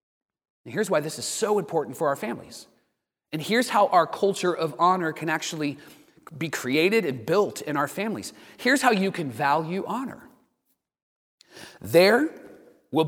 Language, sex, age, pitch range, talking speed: English, male, 30-49, 145-210 Hz, 155 wpm